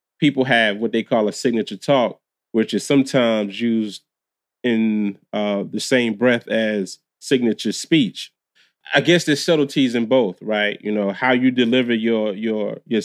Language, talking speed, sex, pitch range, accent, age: English, 160 wpm, male, 105-120 Hz, American, 30-49